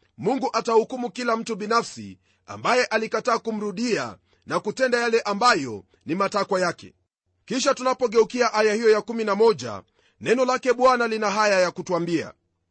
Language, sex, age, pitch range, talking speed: Swahili, male, 40-59, 185-245 Hz, 130 wpm